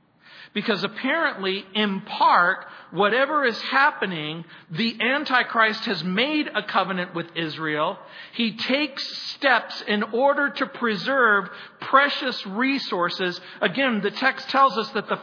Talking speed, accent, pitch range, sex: 120 wpm, American, 170-225 Hz, male